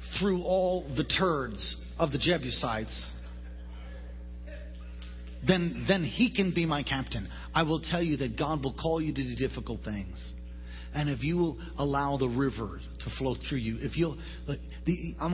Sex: male